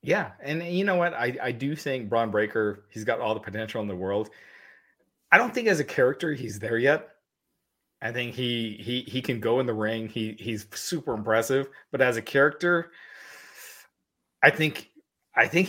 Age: 30-49